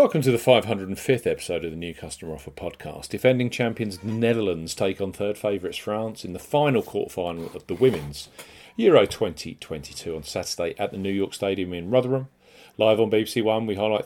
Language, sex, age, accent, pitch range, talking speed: English, male, 40-59, British, 85-115 Hz, 190 wpm